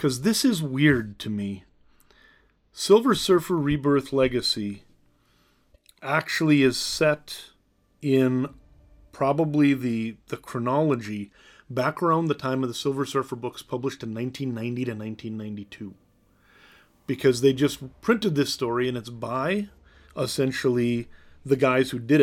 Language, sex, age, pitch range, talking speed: English, male, 30-49, 115-140 Hz, 125 wpm